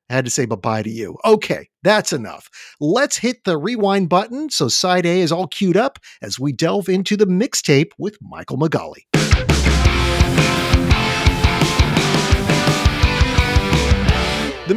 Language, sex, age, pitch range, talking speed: English, male, 50-69, 140-205 Hz, 130 wpm